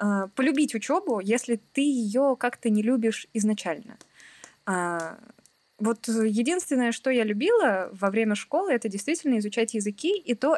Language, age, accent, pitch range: Russian, 20-39, native, 195-260 Hz